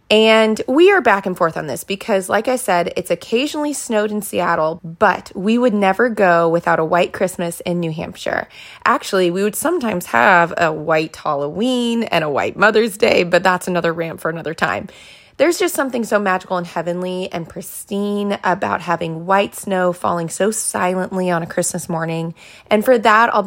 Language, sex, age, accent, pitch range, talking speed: English, female, 20-39, American, 175-225 Hz, 185 wpm